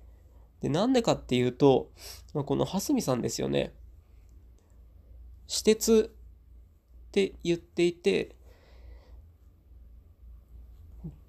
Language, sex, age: Japanese, male, 20-39